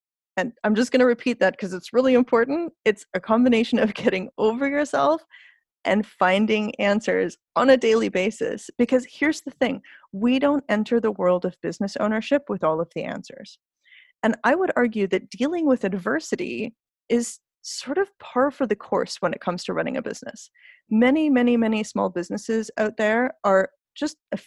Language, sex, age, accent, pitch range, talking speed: English, female, 30-49, American, 190-255 Hz, 180 wpm